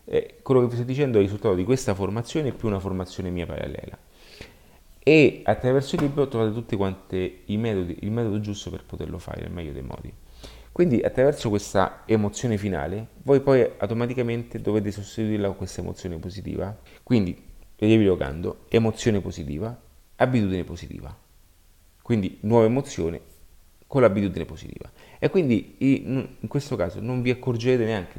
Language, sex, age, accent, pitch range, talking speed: Italian, male, 30-49, native, 90-115 Hz, 150 wpm